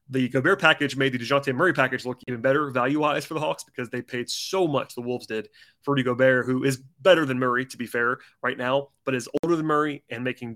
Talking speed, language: 245 wpm, English